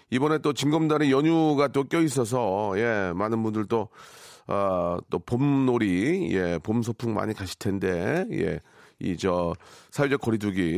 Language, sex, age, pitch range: Korean, male, 40-59, 105-150 Hz